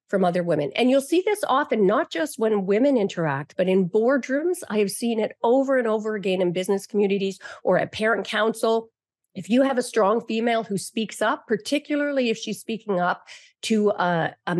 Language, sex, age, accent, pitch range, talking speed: English, female, 40-59, American, 195-265 Hz, 195 wpm